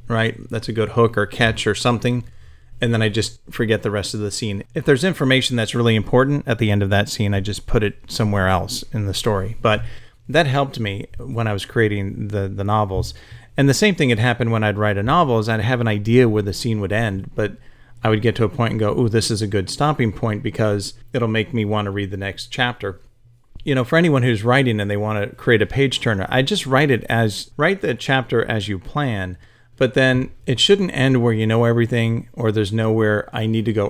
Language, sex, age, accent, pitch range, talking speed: English, male, 40-59, American, 105-125 Hz, 250 wpm